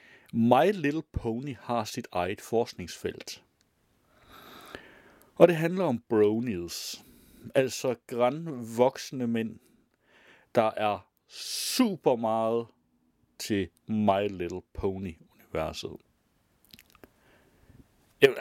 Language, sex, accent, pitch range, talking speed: Danish, male, native, 100-130 Hz, 85 wpm